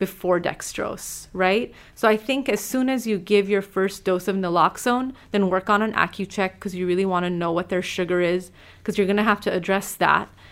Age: 30-49